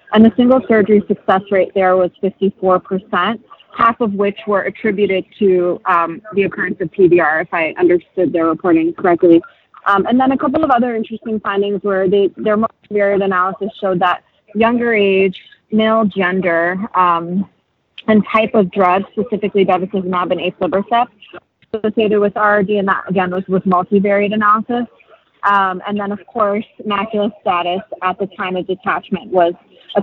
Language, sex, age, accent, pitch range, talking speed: English, female, 20-39, American, 180-215 Hz, 160 wpm